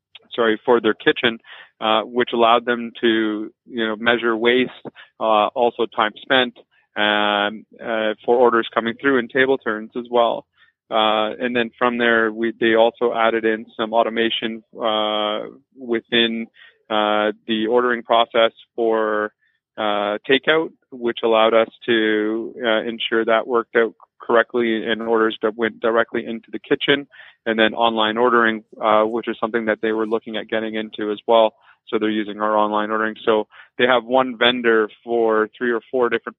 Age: 30-49